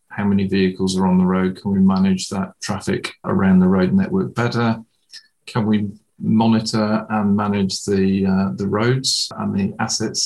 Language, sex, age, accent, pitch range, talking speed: English, male, 40-59, British, 100-125 Hz, 170 wpm